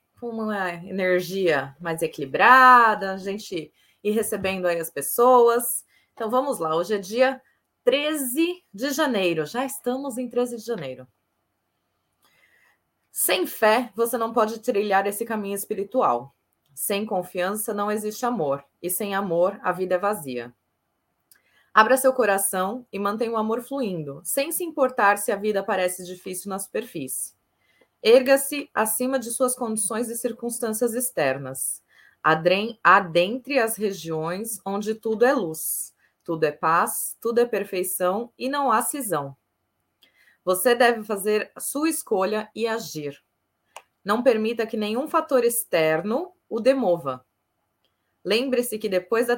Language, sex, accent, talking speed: Portuguese, female, Brazilian, 135 wpm